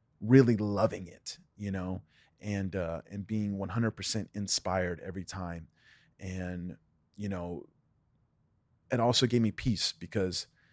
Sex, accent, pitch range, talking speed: male, American, 95-115 Hz, 125 wpm